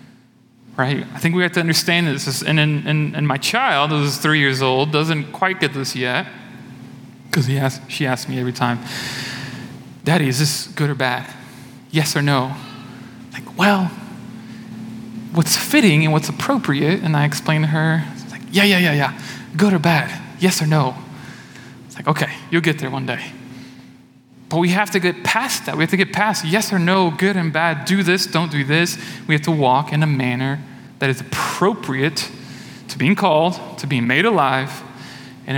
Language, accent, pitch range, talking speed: English, American, 130-175 Hz, 190 wpm